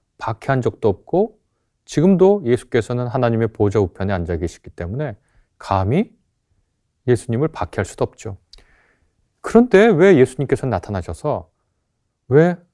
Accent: native